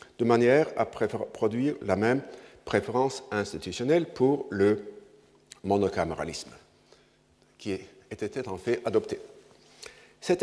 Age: 50-69